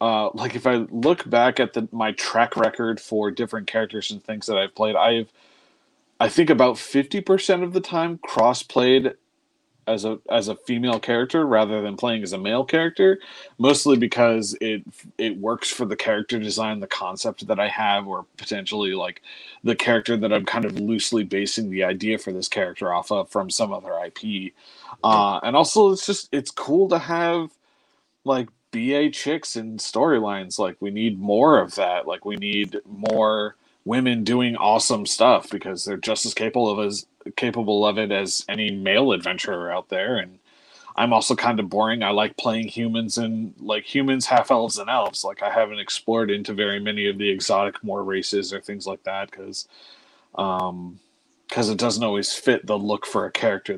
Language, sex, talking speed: English, male, 185 wpm